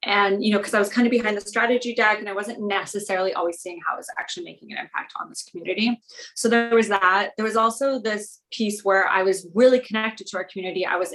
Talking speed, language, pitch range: 255 wpm, English, 190-230 Hz